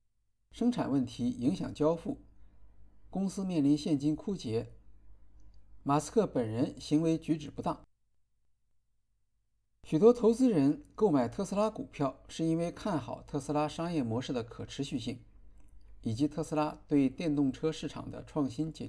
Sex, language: male, Chinese